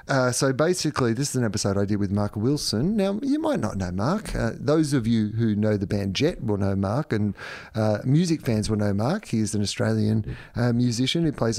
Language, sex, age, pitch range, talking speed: English, male, 30-49, 110-140 Hz, 235 wpm